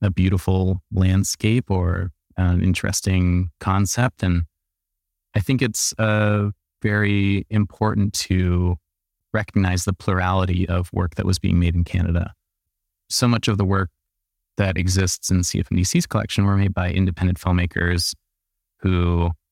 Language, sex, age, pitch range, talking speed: English, male, 20-39, 85-100 Hz, 130 wpm